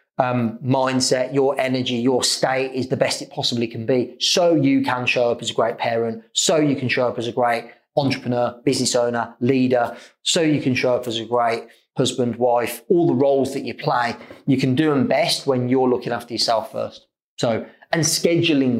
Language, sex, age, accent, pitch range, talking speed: English, male, 30-49, British, 125-150 Hz, 205 wpm